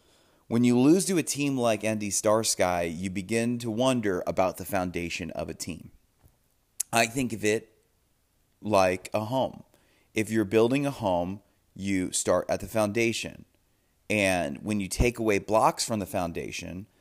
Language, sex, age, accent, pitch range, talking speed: English, male, 30-49, American, 95-115 Hz, 160 wpm